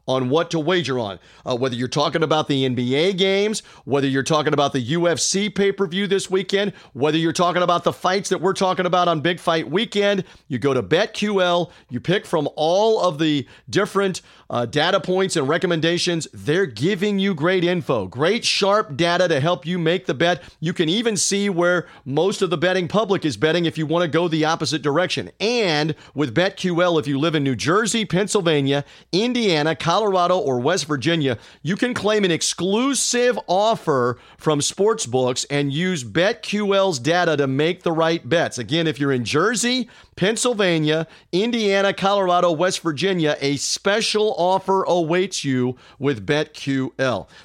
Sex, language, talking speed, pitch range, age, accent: male, English, 170 wpm, 145-195 Hz, 40-59, American